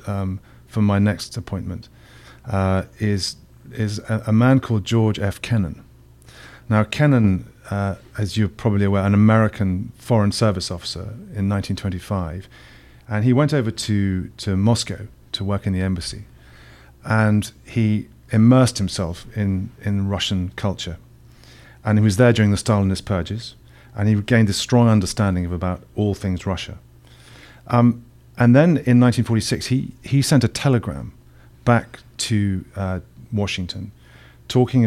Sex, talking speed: male, 145 wpm